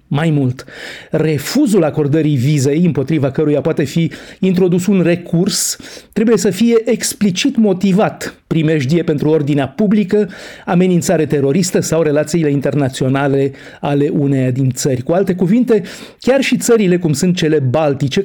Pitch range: 145-180 Hz